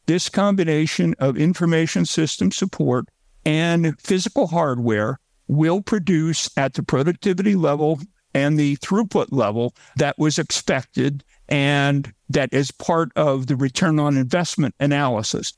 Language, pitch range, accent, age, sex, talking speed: English, 140-180 Hz, American, 50-69, male, 125 wpm